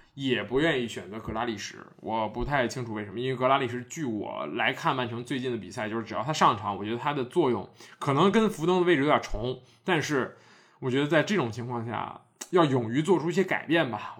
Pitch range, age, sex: 120-155 Hz, 20-39, male